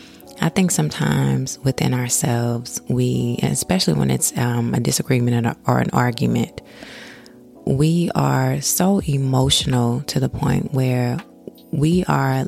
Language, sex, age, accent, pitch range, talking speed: English, female, 20-39, American, 120-145 Hz, 120 wpm